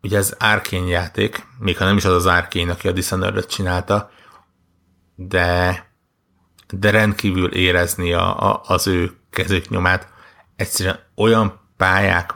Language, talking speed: Hungarian, 135 wpm